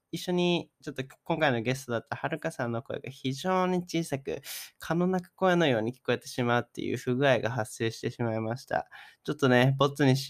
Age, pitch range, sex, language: 20-39, 115-135 Hz, male, Japanese